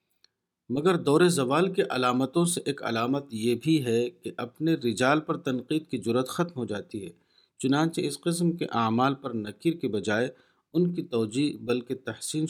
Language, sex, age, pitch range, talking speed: Urdu, male, 50-69, 120-145 Hz, 175 wpm